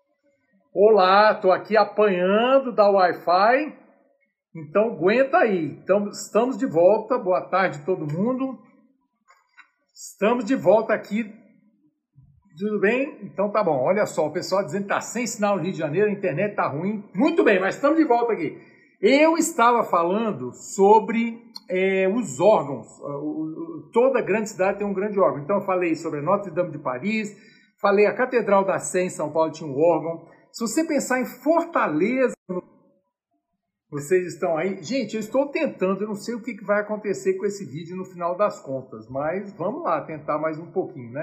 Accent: Brazilian